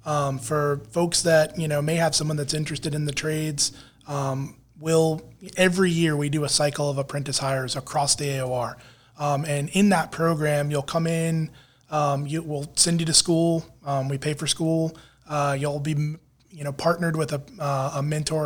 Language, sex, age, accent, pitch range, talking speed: English, male, 20-39, American, 140-165 Hz, 190 wpm